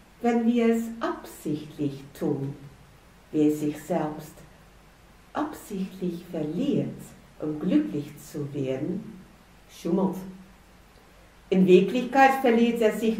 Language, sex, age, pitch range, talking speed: German, female, 60-79, 160-250 Hz, 90 wpm